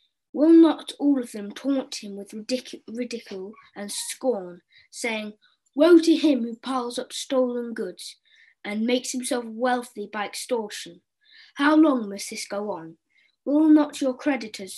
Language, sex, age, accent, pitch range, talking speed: English, female, 20-39, British, 210-275 Hz, 145 wpm